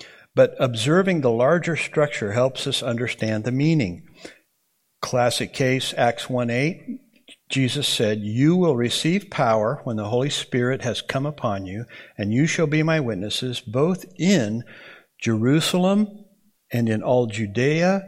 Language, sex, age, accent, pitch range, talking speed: English, male, 60-79, American, 110-150 Hz, 135 wpm